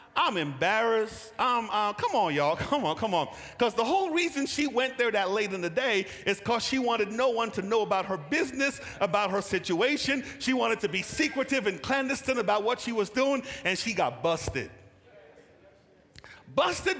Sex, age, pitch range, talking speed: male, 40-59, 190-280 Hz, 190 wpm